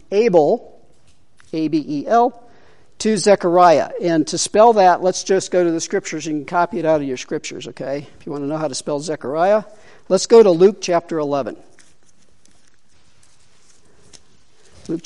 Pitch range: 155-215 Hz